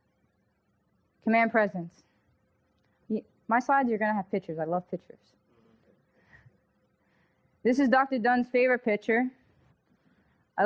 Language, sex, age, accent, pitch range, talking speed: English, female, 20-39, American, 205-250 Hz, 115 wpm